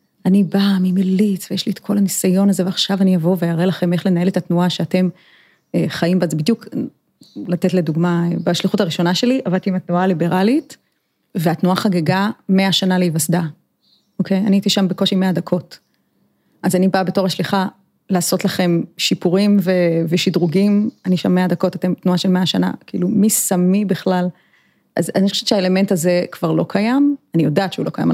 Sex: female